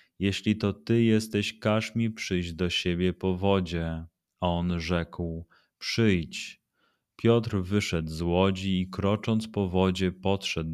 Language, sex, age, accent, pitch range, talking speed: Polish, male, 30-49, native, 85-100 Hz, 135 wpm